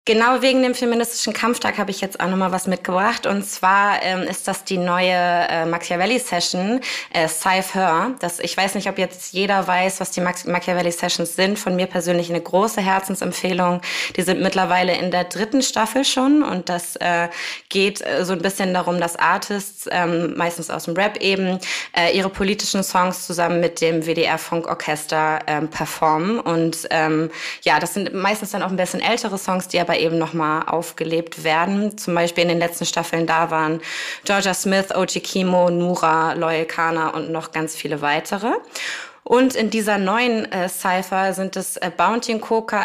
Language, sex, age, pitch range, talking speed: German, female, 20-39, 170-195 Hz, 180 wpm